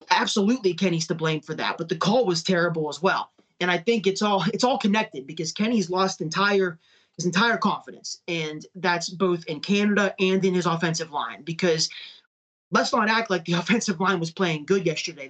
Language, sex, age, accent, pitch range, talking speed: English, male, 30-49, American, 165-190 Hz, 195 wpm